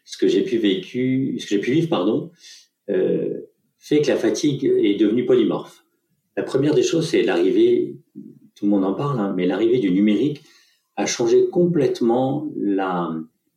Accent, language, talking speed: French, French, 160 wpm